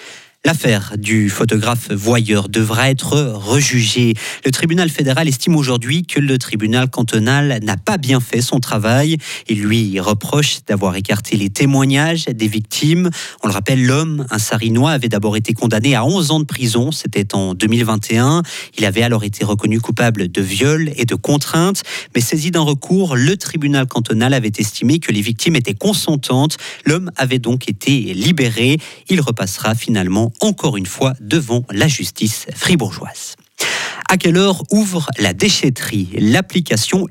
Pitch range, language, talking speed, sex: 110-155 Hz, French, 155 wpm, male